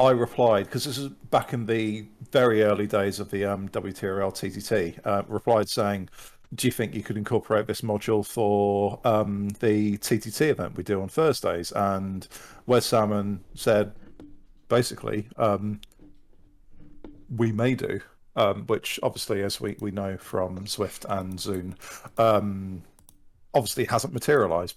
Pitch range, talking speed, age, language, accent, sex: 95-115 Hz, 145 wpm, 50-69, English, British, male